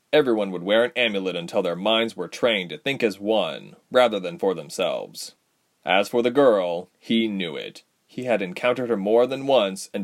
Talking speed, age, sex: 195 wpm, 30-49, male